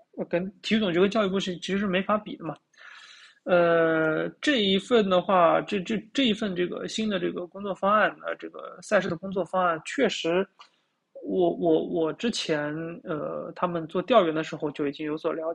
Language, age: Chinese, 20-39